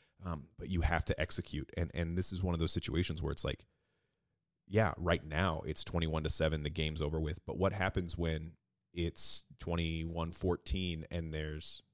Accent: American